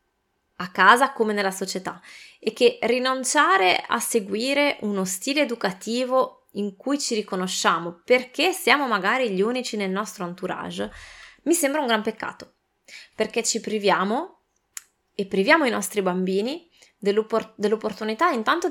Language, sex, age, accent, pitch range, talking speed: Italian, female, 20-39, native, 200-265 Hz, 130 wpm